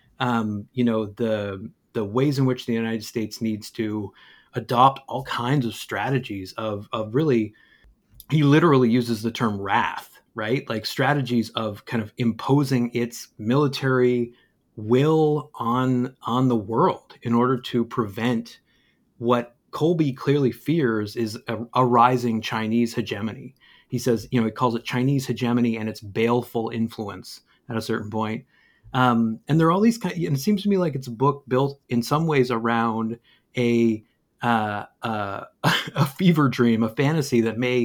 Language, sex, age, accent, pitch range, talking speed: English, male, 30-49, American, 115-140 Hz, 165 wpm